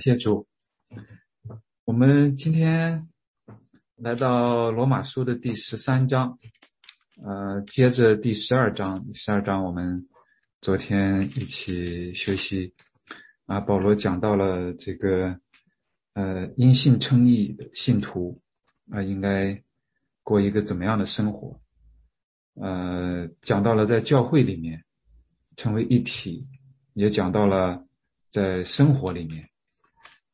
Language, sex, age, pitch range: English, male, 20-39, 90-120 Hz